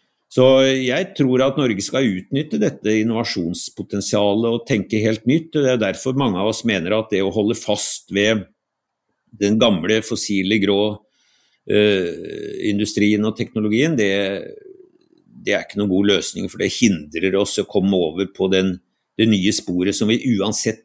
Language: English